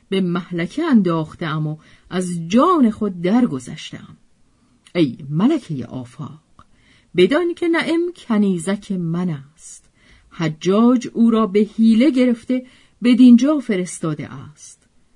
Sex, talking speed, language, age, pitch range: female, 105 wpm, Persian, 50-69, 160-255 Hz